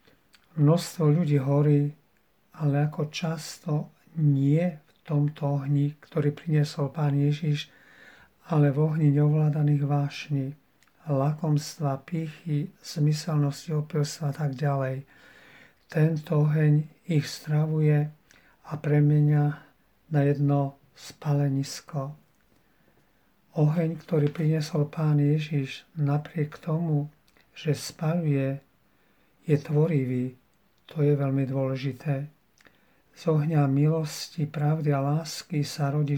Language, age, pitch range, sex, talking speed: Slovak, 50-69, 145-155 Hz, male, 95 wpm